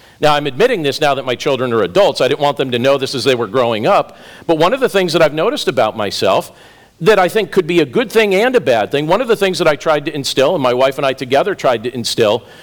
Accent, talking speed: American, 295 wpm